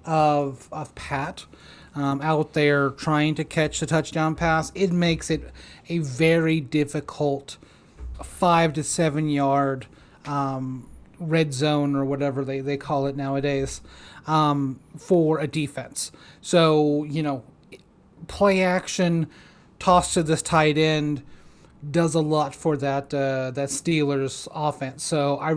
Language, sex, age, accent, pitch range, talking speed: English, male, 30-49, American, 145-170 Hz, 135 wpm